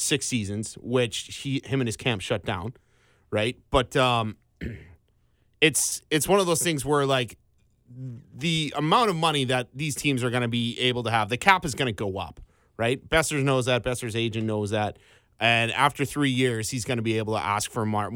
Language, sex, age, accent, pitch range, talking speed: English, male, 30-49, American, 115-135 Hz, 205 wpm